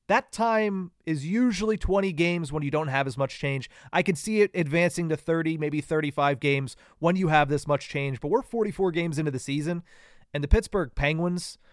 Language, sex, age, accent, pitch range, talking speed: English, male, 30-49, American, 135-170 Hz, 205 wpm